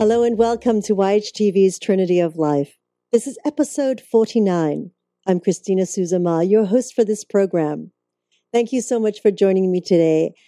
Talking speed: 165 wpm